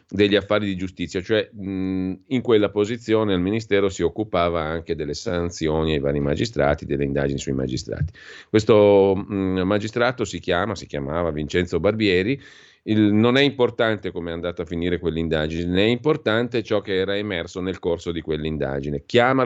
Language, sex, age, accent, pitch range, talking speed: Italian, male, 40-59, native, 85-110 Hz, 155 wpm